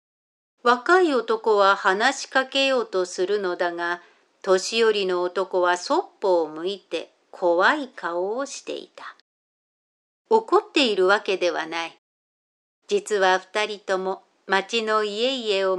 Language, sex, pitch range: Japanese, female, 185-250 Hz